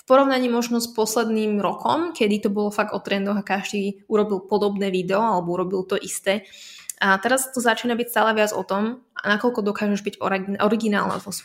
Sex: female